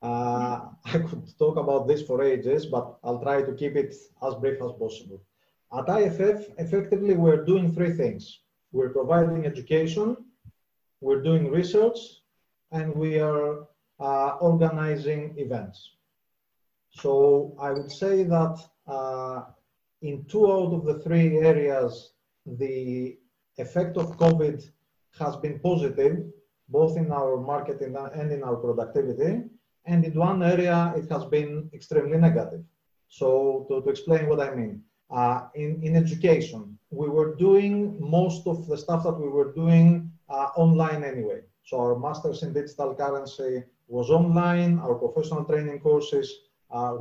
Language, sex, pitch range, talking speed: English, male, 140-170 Hz, 145 wpm